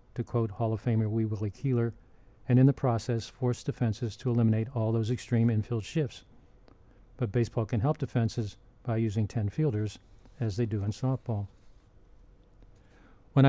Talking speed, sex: 160 wpm, male